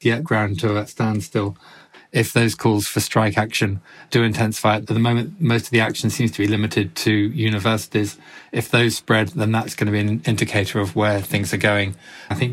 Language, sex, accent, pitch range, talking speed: English, male, British, 105-120 Hz, 205 wpm